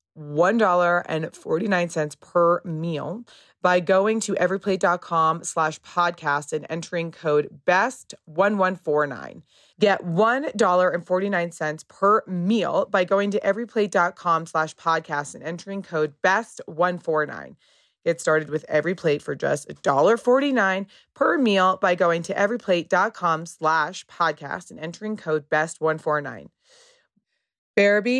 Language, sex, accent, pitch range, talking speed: English, female, American, 150-190 Hz, 100 wpm